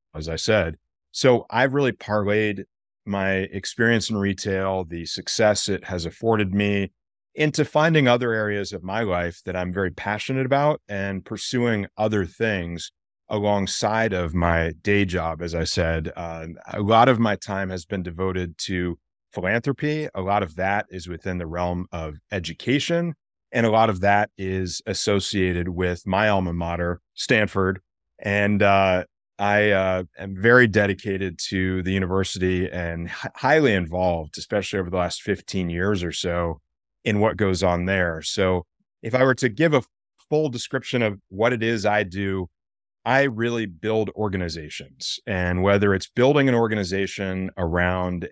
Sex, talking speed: male, 160 wpm